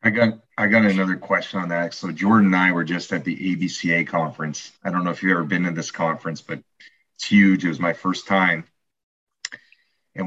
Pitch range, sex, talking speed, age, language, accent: 90-110 Hz, male, 215 wpm, 30-49, English, American